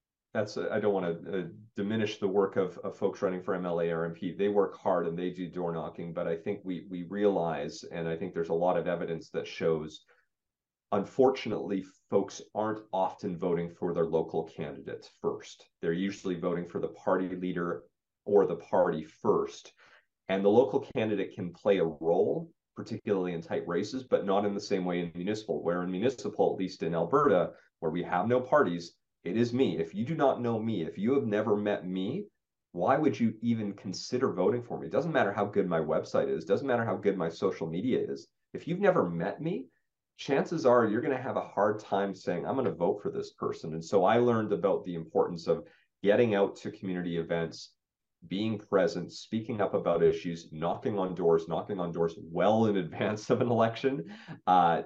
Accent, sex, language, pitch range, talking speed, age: American, male, English, 85-110 Hz, 200 wpm, 30-49